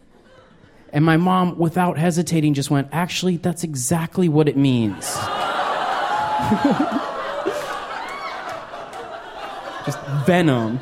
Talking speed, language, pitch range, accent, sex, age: 85 wpm, English, 150-215 Hz, American, male, 20-39